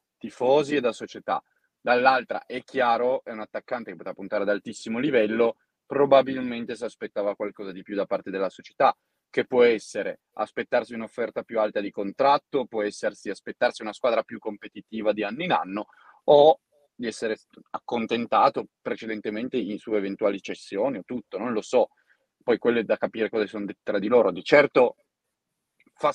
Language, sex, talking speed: Italian, male, 165 wpm